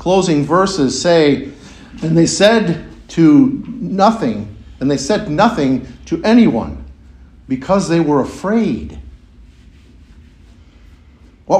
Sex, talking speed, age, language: male, 100 wpm, 50-69, English